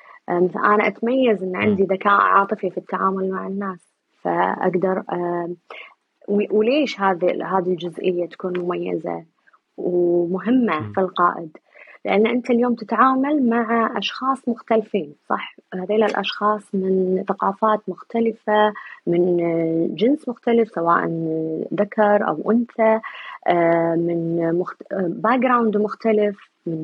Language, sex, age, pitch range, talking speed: Arabic, female, 20-39, 175-215 Hz, 100 wpm